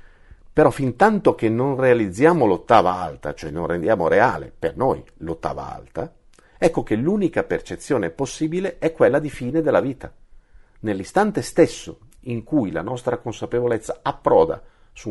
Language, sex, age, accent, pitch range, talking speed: Italian, male, 50-69, native, 115-155 Hz, 145 wpm